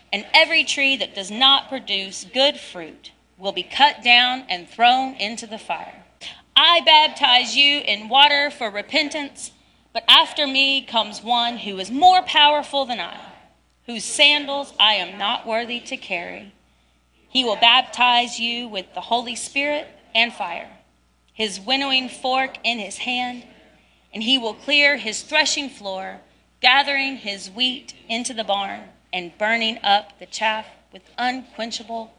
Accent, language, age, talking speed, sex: American, English, 30-49, 150 wpm, female